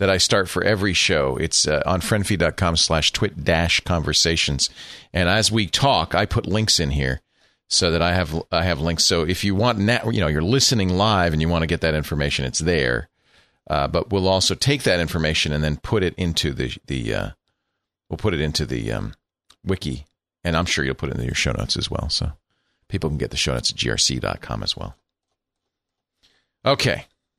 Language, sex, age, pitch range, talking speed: English, male, 40-59, 85-120 Hz, 210 wpm